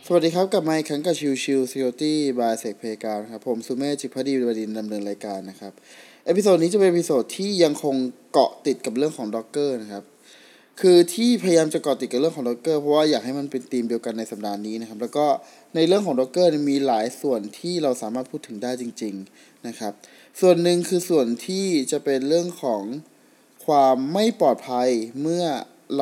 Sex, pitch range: male, 120-165 Hz